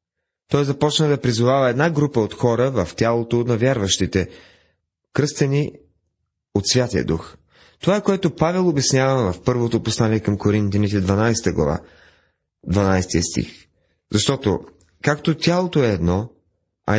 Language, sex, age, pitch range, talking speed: Bulgarian, male, 30-49, 90-135 Hz, 125 wpm